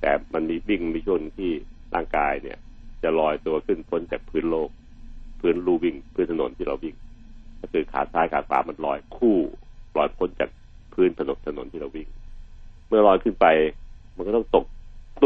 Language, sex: Thai, male